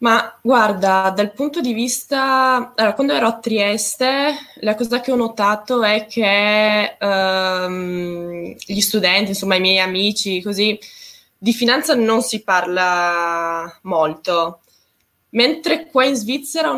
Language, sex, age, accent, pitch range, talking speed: Italian, female, 20-39, native, 190-230 Hz, 130 wpm